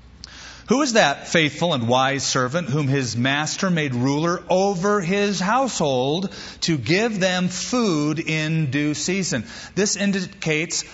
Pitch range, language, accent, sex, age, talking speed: 110-180 Hz, English, American, male, 40-59, 130 wpm